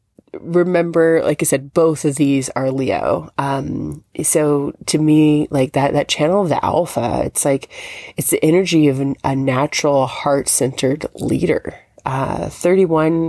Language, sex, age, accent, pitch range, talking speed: English, female, 30-49, American, 135-155 Hz, 155 wpm